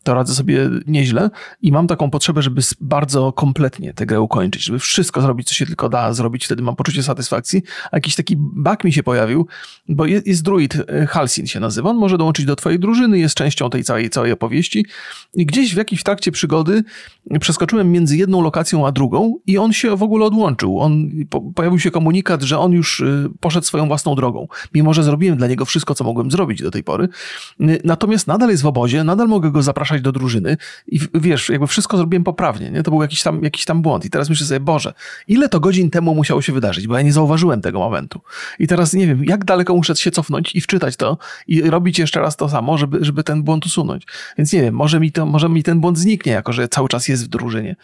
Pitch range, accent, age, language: 145-180 Hz, native, 30-49, Polish